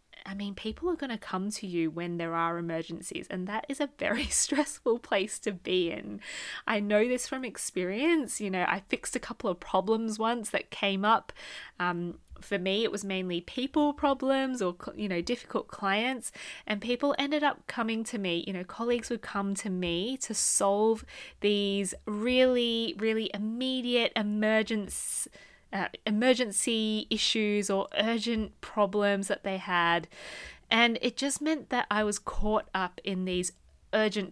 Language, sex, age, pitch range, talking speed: English, female, 20-39, 195-245 Hz, 165 wpm